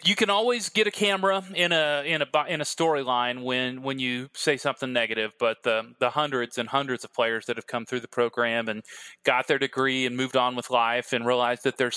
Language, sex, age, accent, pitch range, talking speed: English, male, 30-49, American, 120-150 Hz, 230 wpm